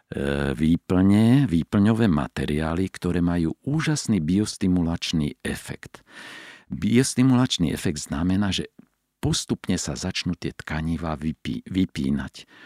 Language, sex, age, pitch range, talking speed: Slovak, male, 50-69, 80-100 Hz, 90 wpm